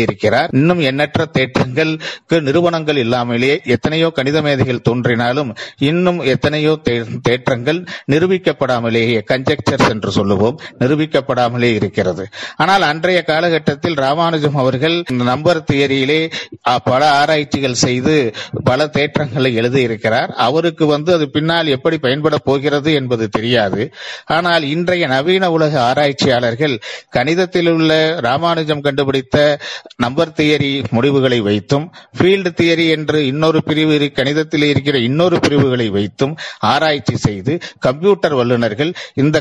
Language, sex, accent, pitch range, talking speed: Tamil, male, native, 125-155 Hz, 100 wpm